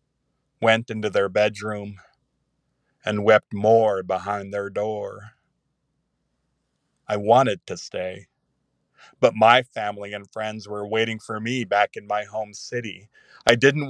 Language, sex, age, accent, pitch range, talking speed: English, male, 40-59, American, 105-125 Hz, 130 wpm